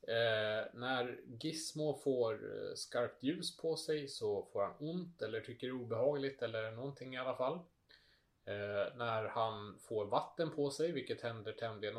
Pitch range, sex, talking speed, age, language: 110-155 Hz, male, 160 wpm, 30-49, English